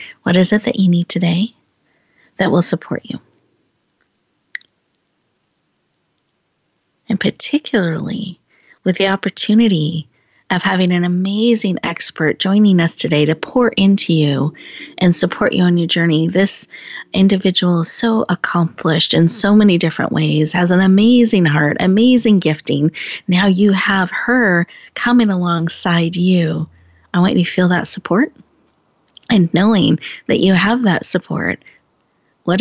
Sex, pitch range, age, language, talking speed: female, 175-225 Hz, 30-49, English, 135 wpm